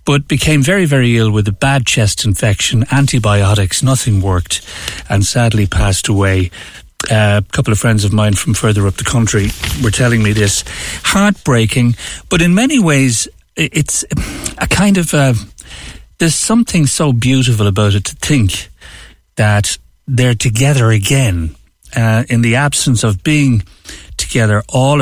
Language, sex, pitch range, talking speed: English, male, 100-135 Hz, 145 wpm